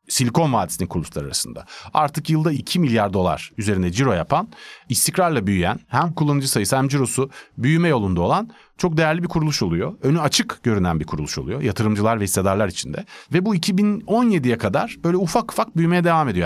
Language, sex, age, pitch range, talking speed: Turkish, male, 40-59, 105-165 Hz, 170 wpm